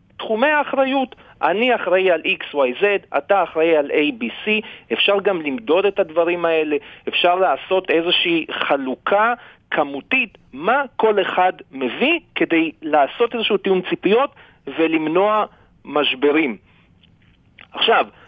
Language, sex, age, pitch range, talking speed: Hebrew, male, 40-59, 160-240 Hz, 110 wpm